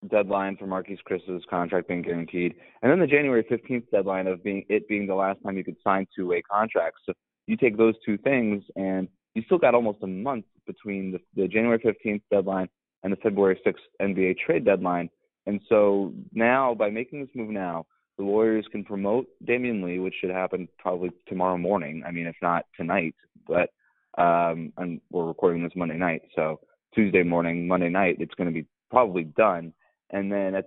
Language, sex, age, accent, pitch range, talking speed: English, male, 20-39, American, 90-105 Hz, 195 wpm